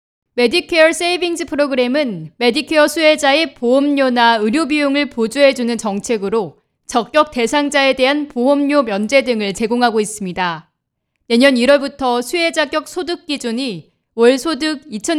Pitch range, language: 225-300 Hz, Korean